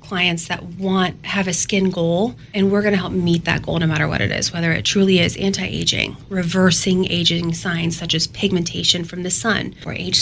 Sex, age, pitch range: female, 20-39, 165-195 Hz